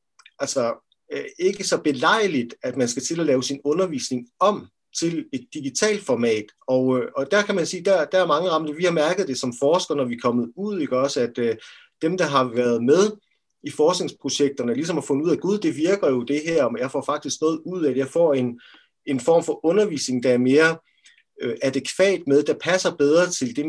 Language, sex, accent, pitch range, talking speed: Danish, male, native, 130-175 Hz, 220 wpm